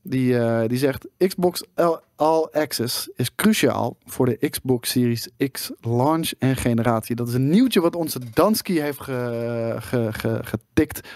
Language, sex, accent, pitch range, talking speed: Dutch, male, Dutch, 115-145 Hz, 155 wpm